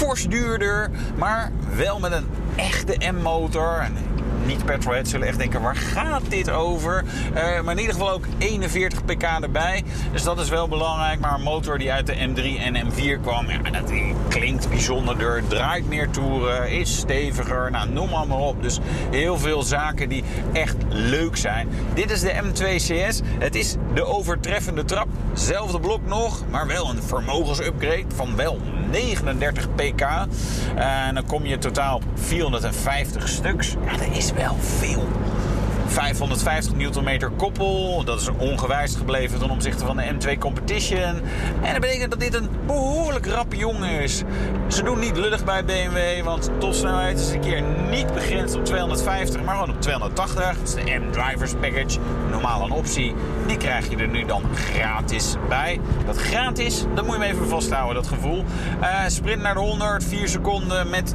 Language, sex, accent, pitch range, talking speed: Dutch, male, Dutch, 120-165 Hz, 170 wpm